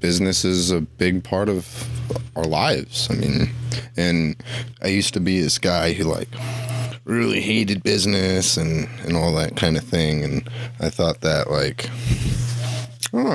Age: 30-49